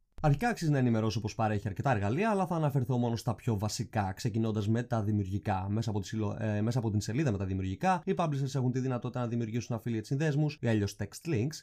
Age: 20-39